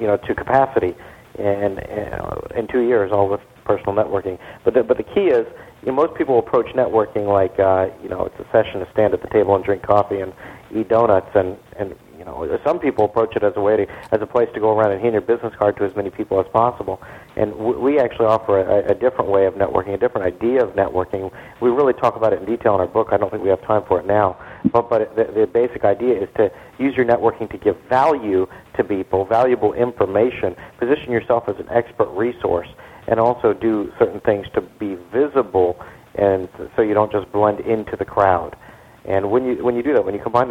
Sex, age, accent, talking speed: male, 40-59, American, 235 wpm